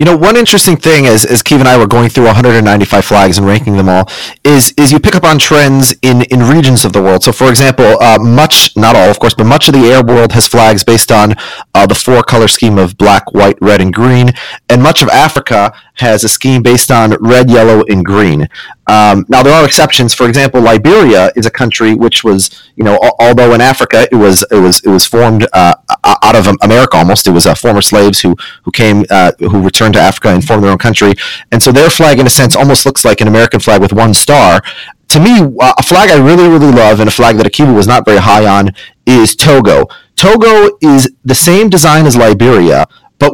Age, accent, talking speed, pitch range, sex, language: 30-49, American, 230 wpm, 110-140 Hz, male, English